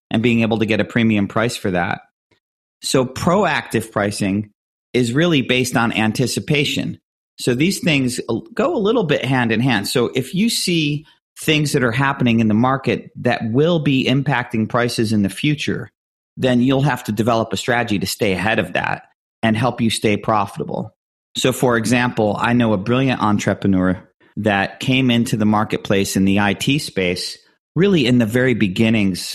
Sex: male